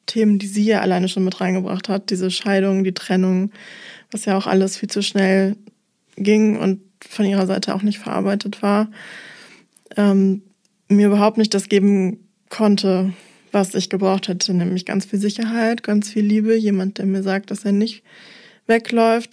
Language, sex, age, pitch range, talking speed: German, female, 20-39, 190-210 Hz, 170 wpm